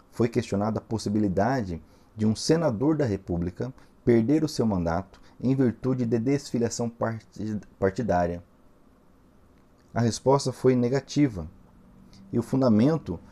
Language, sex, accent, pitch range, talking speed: Portuguese, male, Brazilian, 95-120 Hz, 115 wpm